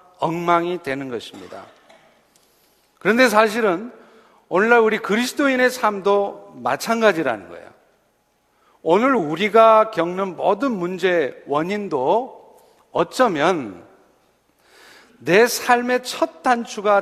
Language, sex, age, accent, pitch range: Korean, male, 50-69, native, 175-225 Hz